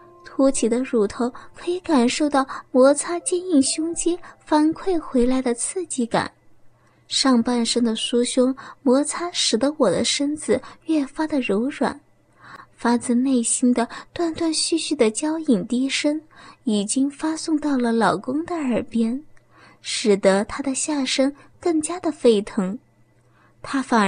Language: Chinese